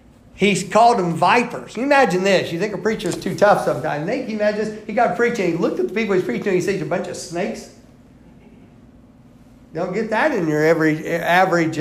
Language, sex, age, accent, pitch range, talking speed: English, male, 50-69, American, 190-275 Hz, 230 wpm